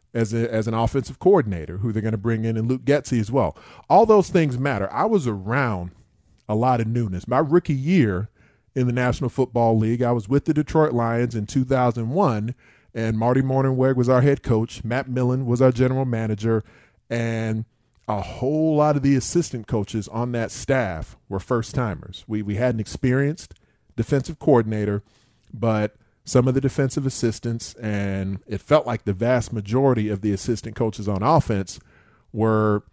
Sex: male